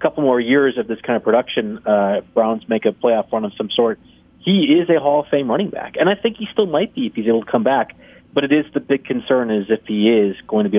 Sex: male